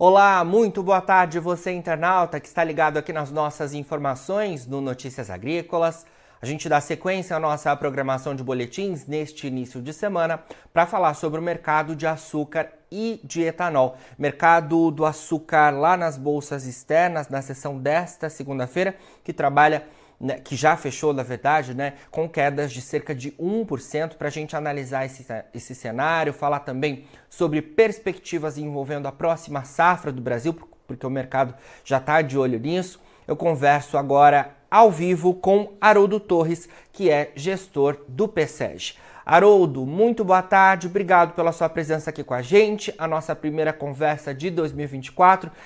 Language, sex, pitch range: Portuguese, male, 140-170 Hz